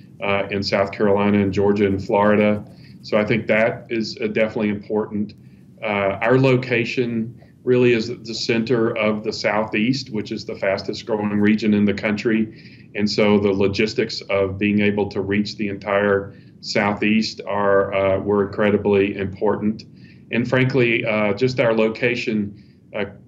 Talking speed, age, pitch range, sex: 150 wpm, 40-59, 100-115 Hz, male